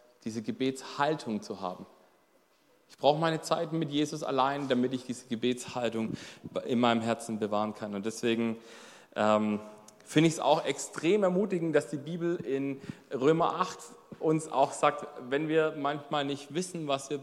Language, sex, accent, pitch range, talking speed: German, male, German, 125-170 Hz, 155 wpm